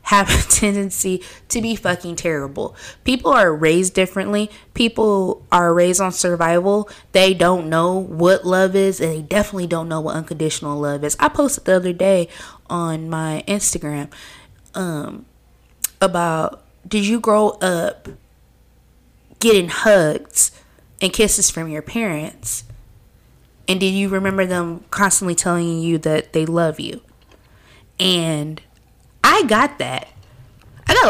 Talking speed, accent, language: 135 wpm, American, English